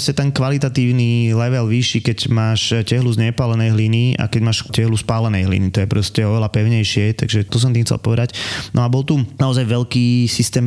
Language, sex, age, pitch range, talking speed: Slovak, male, 20-39, 110-125 Hz, 200 wpm